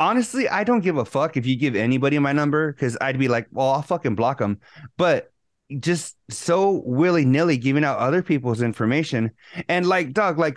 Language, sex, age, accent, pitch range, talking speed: English, male, 30-49, American, 125-175 Hz, 200 wpm